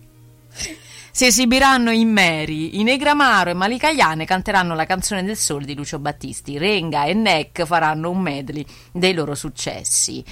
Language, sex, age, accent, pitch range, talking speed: Italian, female, 30-49, native, 155-225 Hz, 150 wpm